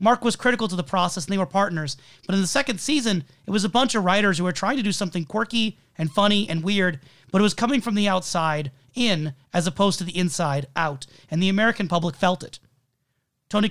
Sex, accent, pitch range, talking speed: male, American, 145-205 Hz, 230 wpm